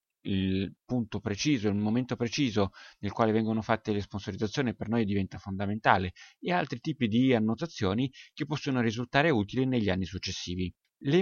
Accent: native